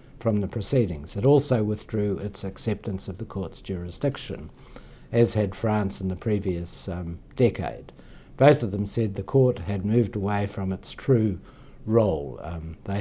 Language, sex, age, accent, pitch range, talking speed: English, male, 60-79, Australian, 95-120 Hz, 160 wpm